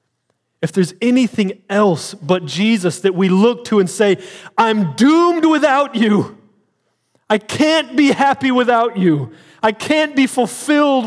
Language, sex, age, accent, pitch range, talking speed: English, male, 30-49, American, 140-225 Hz, 140 wpm